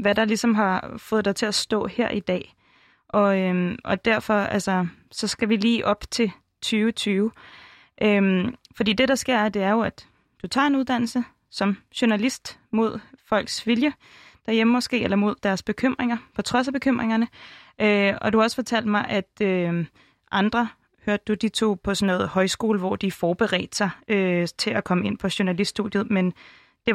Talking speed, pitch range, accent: 185 wpm, 185-225 Hz, native